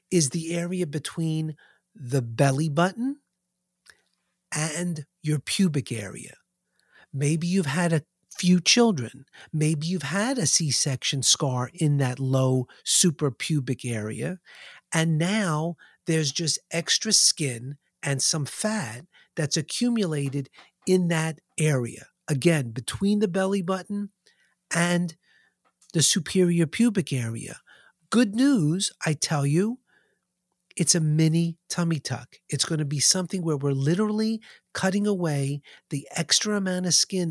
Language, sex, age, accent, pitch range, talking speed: English, male, 50-69, American, 145-185 Hz, 125 wpm